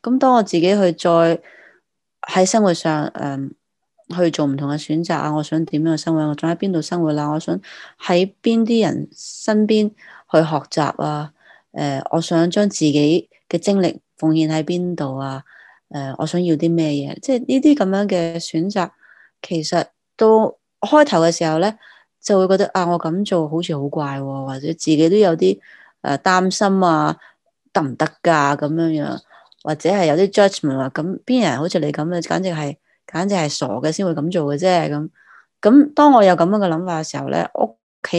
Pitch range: 150-190 Hz